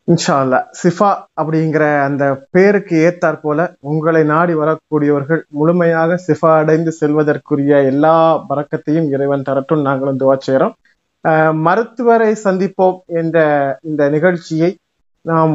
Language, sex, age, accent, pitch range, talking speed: Tamil, male, 30-49, native, 150-185 Hz, 110 wpm